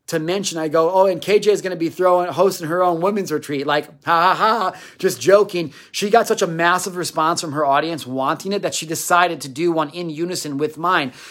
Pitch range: 145-180 Hz